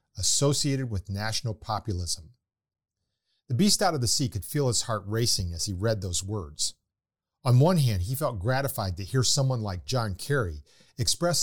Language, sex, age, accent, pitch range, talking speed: English, male, 50-69, American, 100-135 Hz, 175 wpm